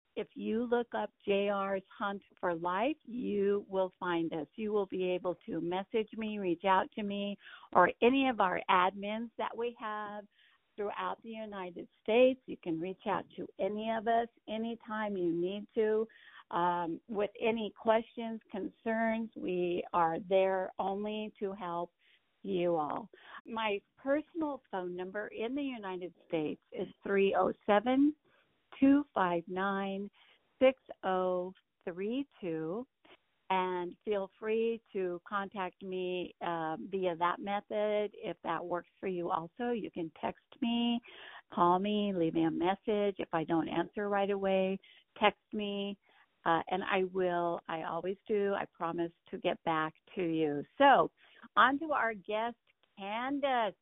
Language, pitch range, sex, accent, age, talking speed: English, 180-225 Hz, female, American, 50-69, 145 wpm